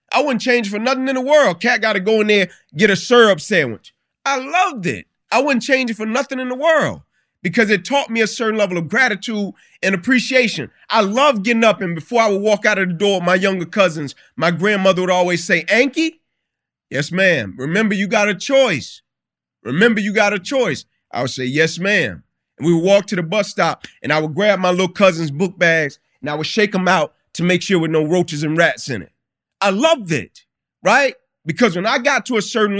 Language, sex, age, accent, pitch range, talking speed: English, male, 30-49, American, 185-250 Hz, 230 wpm